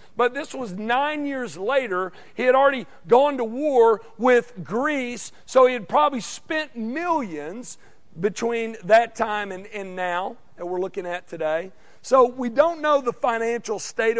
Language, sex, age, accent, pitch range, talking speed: English, male, 50-69, American, 180-245 Hz, 160 wpm